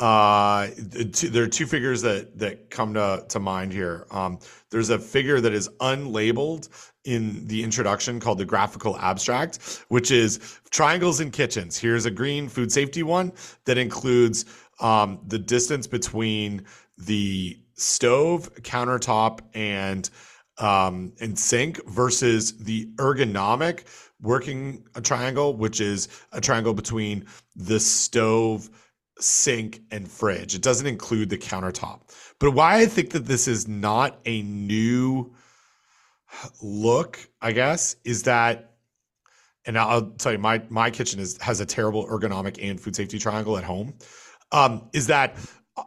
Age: 40-59